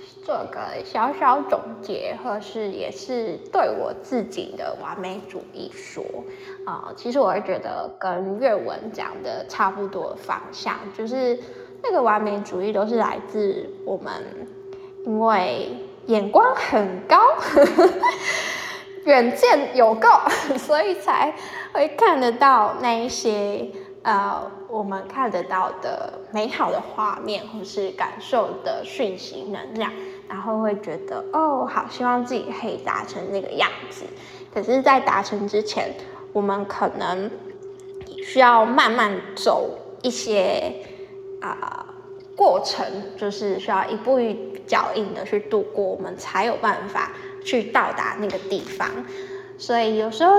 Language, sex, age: Chinese, female, 10-29